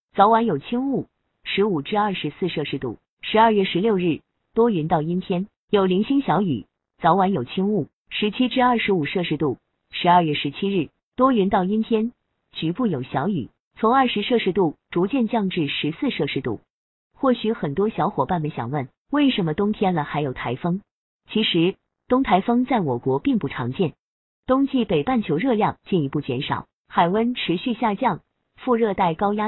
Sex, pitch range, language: female, 165-230 Hz, Chinese